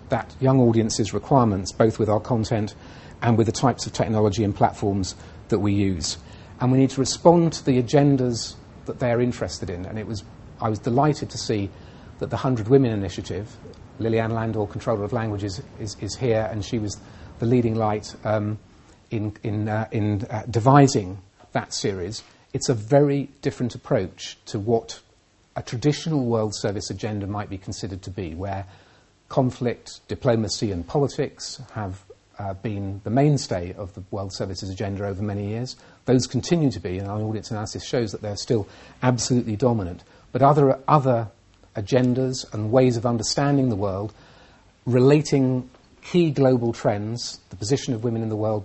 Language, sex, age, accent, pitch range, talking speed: English, male, 40-59, British, 100-125 Hz, 170 wpm